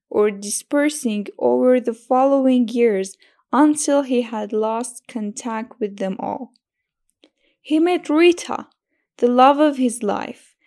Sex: female